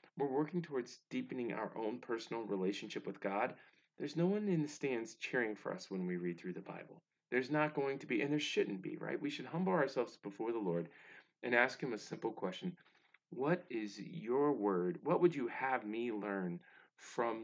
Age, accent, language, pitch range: 40-59, American, English, 105-150 Hz